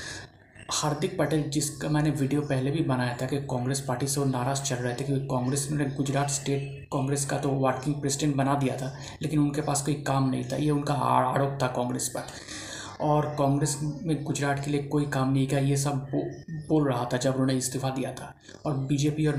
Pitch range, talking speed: 135-150 Hz, 210 wpm